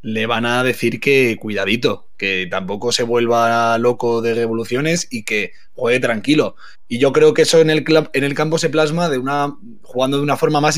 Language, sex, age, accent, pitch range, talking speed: Spanish, male, 20-39, Spanish, 115-145 Hz, 205 wpm